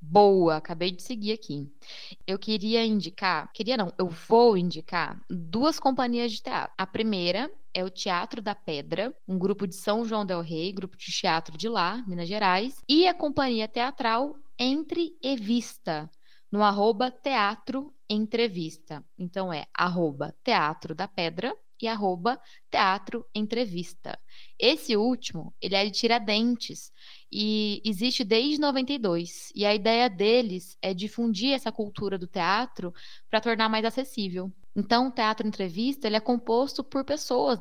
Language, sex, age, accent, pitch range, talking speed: Portuguese, female, 20-39, Brazilian, 185-240 Hz, 145 wpm